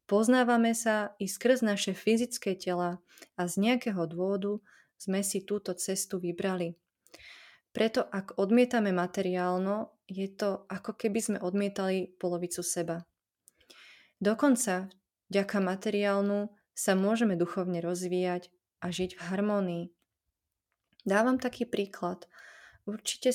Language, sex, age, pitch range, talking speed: Slovak, female, 20-39, 180-210 Hz, 110 wpm